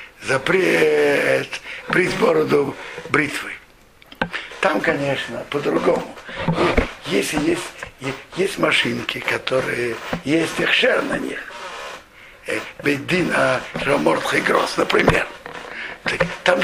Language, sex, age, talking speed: Russian, male, 60-79, 85 wpm